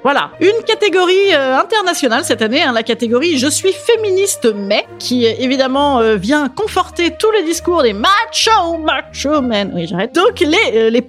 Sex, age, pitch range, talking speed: female, 30-49, 225-330 Hz, 195 wpm